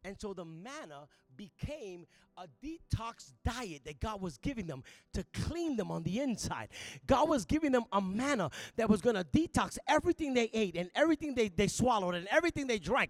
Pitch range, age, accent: 215-295 Hz, 30-49, American